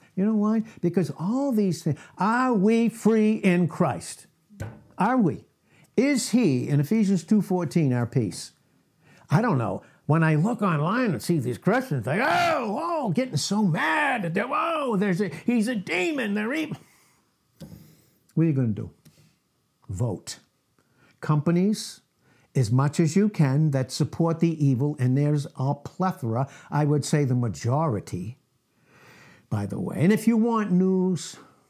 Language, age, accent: English, 60-79, American